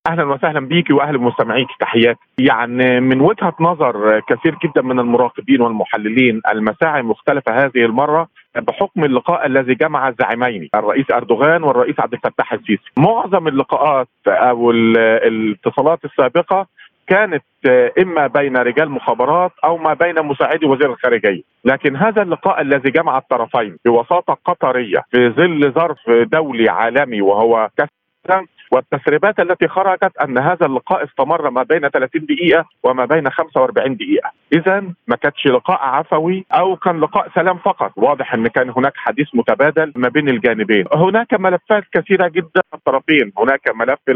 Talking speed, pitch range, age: 140 wpm, 125-175 Hz, 50-69